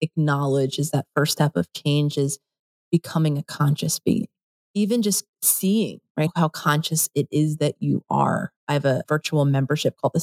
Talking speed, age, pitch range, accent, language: 175 wpm, 30-49, 155-195 Hz, American, English